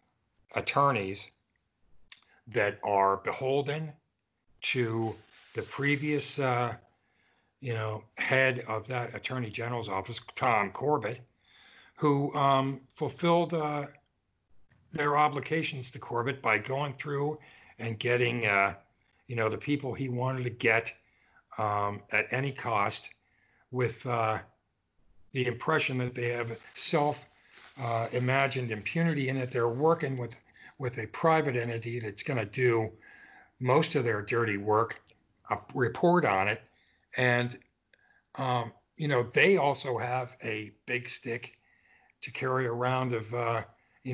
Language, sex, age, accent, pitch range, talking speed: English, male, 60-79, American, 110-135 Hz, 125 wpm